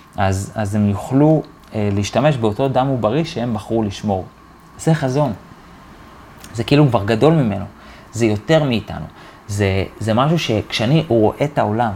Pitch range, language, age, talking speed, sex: 110-150 Hz, Hebrew, 30-49, 145 wpm, male